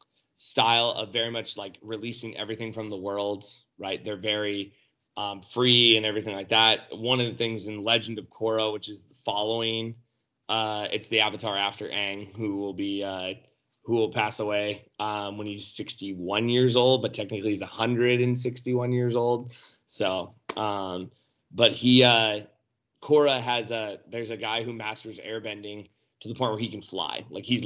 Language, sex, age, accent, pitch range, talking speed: English, male, 20-39, American, 105-115 Hz, 175 wpm